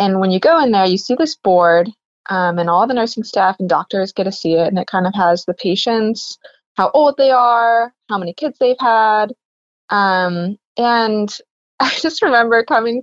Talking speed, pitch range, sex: 205 wpm, 200-260 Hz, female